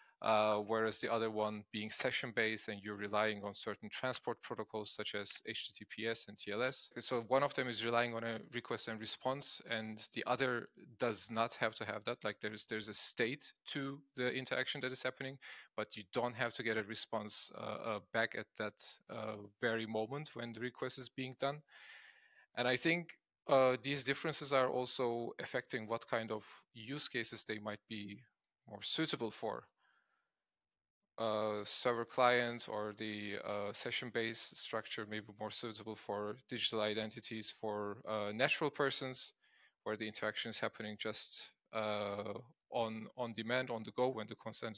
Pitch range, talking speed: 110-125 Hz, 170 wpm